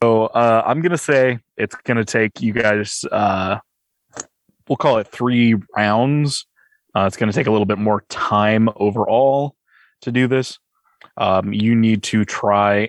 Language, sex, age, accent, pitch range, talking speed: English, male, 20-39, American, 100-120 Hz, 170 wpm